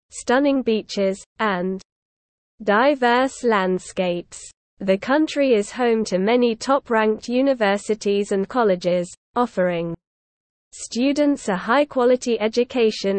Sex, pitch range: female, 195-245 Hz